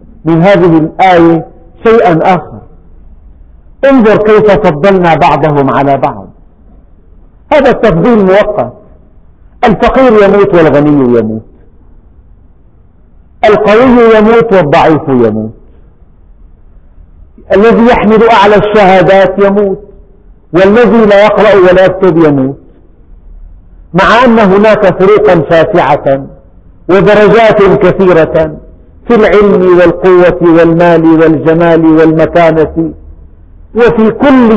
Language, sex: Arabic, male